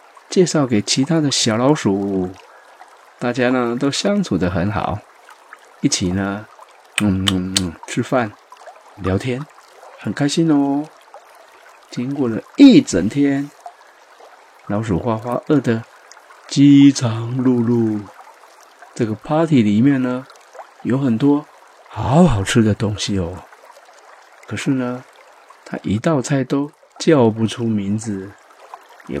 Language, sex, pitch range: Chinese, male, 105-145 Hz